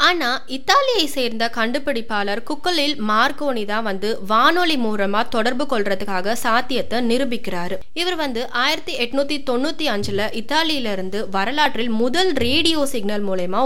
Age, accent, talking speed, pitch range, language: 20-39, native, 110 wpm, 200-275 Hz, Tamil